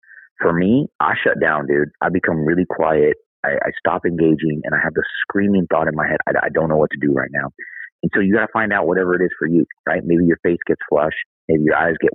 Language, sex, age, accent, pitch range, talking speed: English, male, 30-49, American, 80-105 Hz, 265 wpm